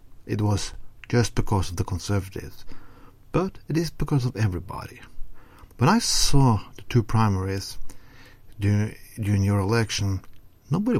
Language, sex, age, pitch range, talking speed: English, male, 60-79, 100-125 Hz, 130 wpm